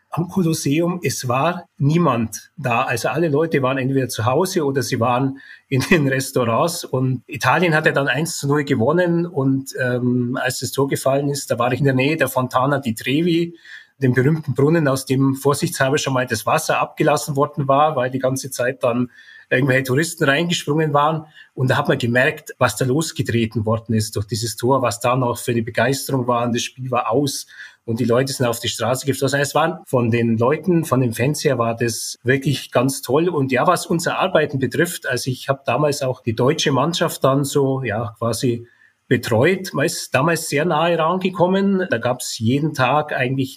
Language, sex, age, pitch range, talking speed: German, male, 30-49, 125-155 Hz, 200 wpm